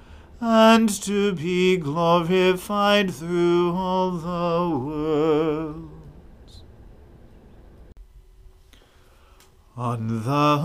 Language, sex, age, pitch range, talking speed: English, male, 40-59, 165-175 Hz, 55 wpm